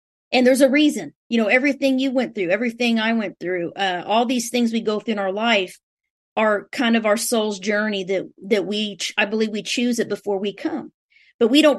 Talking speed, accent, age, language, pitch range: 230 wpm, American, 40-59, English, 195-235 Hz